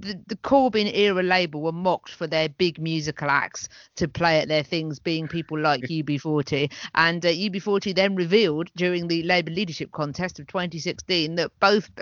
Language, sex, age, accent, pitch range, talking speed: English, female, 50-69, British, 170-250 Hz, 175 wpm